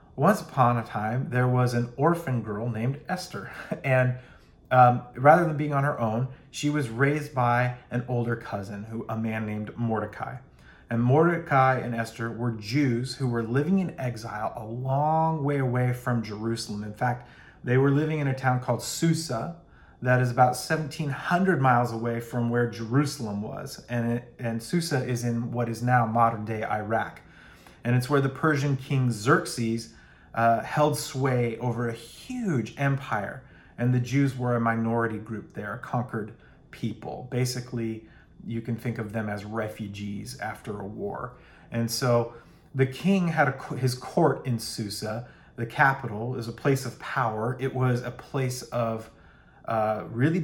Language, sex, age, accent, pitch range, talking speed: English, male, 30-49, American, 115-135 Hz, 165 wpm